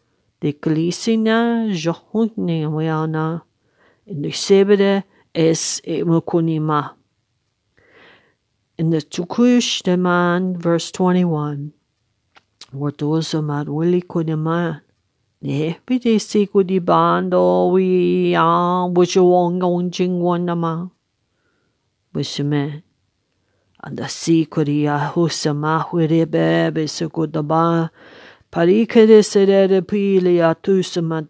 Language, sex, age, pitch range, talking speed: English, female, 50-69, 150-175 Hz, 55 wpm